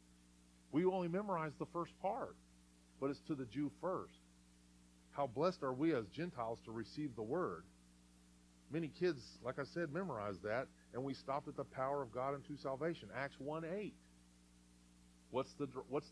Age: 40-59